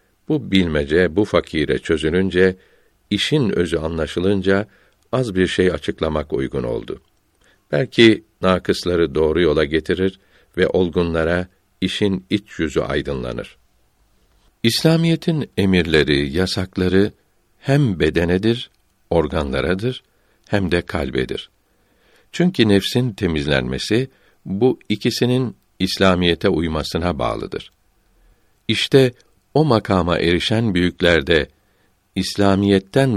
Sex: male